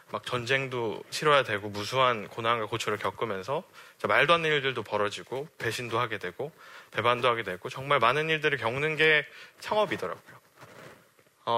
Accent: native